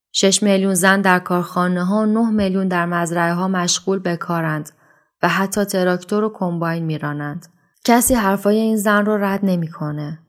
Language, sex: Persian, female